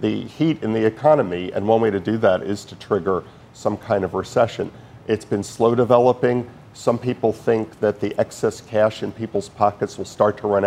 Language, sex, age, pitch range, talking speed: English, male, 50-69, 100-120 Hz, 200 wpm